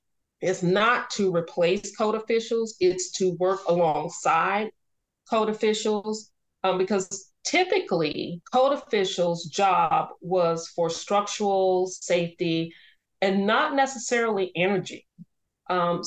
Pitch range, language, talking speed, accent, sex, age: 170-205 Hz, English, 100 wpm, American, female, 40-59